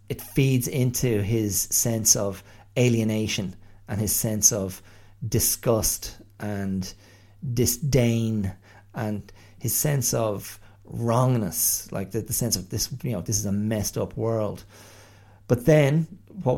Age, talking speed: 40-59, 130 wpm